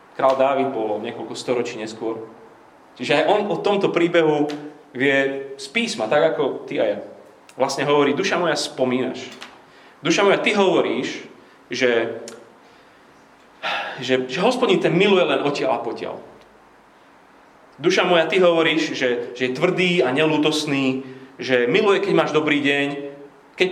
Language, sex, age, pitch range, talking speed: Slovak, male, 30-49, 125-155 Hz, 145 wpm